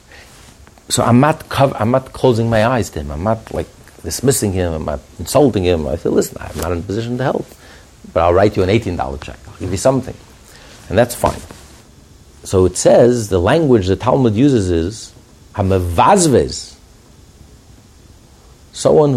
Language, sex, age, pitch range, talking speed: English, male, 50-69, 95-130 Hz, 175 wpm